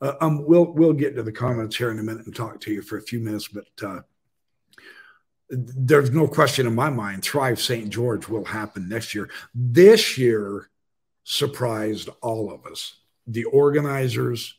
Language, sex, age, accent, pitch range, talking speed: English, male, 60-79, American, 110-140 Hz, 175 wpm